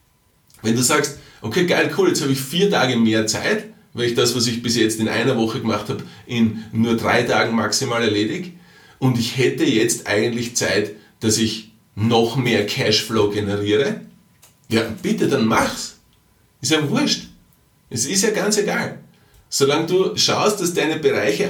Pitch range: 110-155 Hz